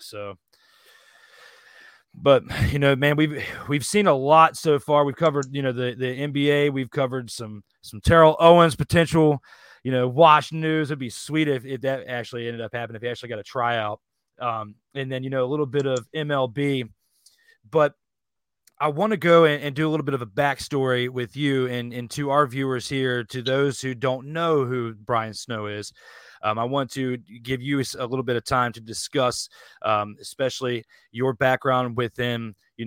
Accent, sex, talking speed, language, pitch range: American, male, 195 wpm, English, 120-140 Hz